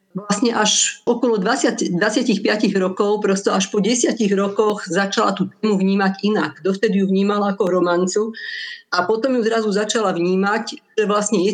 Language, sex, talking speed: Slovak, female, 155 wpm